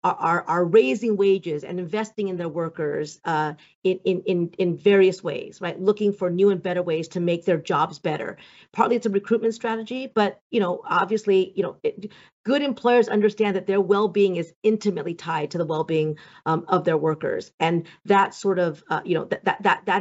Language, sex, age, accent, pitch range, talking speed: English, female, 40-59, American, 170-210 Hz, 195 wpm